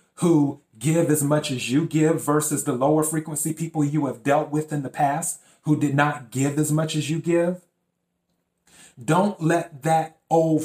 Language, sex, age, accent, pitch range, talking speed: English, male, 30-49, American, 140-165 Hz, 180 wpm